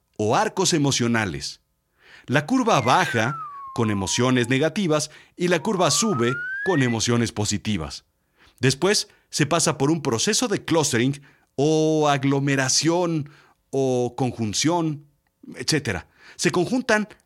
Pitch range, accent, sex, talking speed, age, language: 120-185 Hz, Mexican, male, 110 wpm, 50-69, Spanish